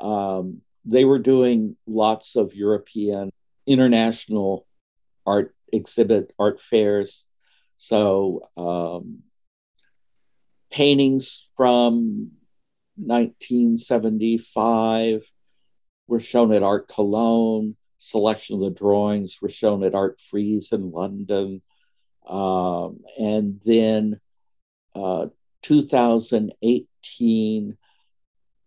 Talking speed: 80 wpm